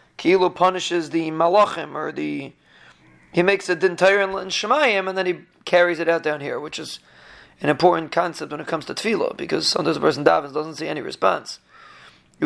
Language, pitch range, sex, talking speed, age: English, 160-200 Hz, male, 195 wpm, 30-49